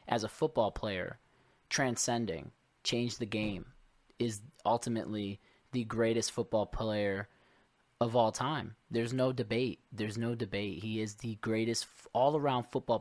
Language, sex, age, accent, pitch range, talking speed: English, male, 20-39, American, 105-120 Hz, 135 wpm